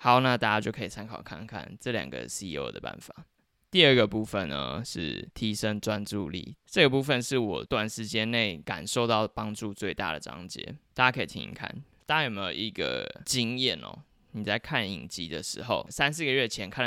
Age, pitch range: 20-39, 100-120 Hz